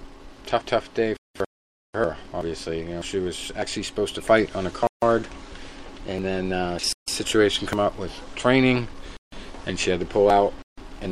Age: 40-59